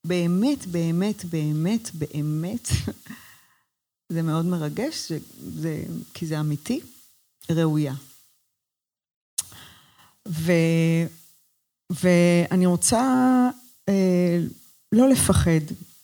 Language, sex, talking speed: Hebrew, female, 60 wpm